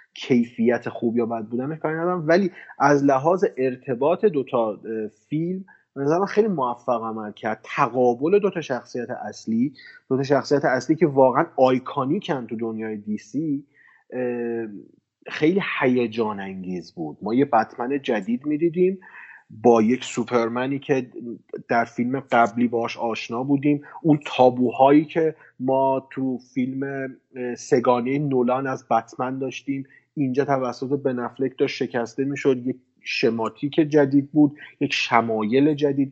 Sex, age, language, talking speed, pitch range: male, 30-49, Persian, 120 wpm, 125-150 Hz